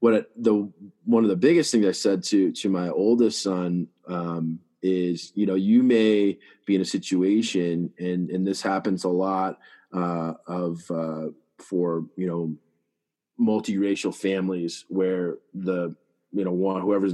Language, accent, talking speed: English, American, 155 wpm